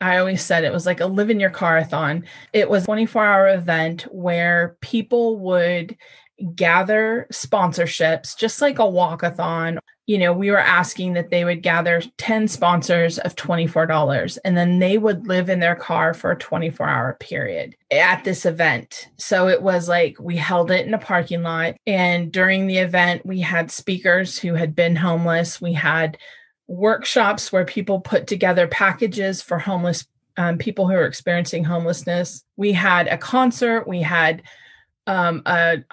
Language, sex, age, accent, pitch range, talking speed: English, female, 20-39, American, 170-200 Hz, 165 wpm